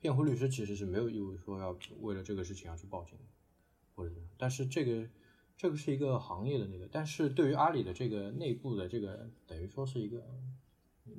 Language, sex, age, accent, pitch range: Chinese, male, 20-39, native, 90-120 Hz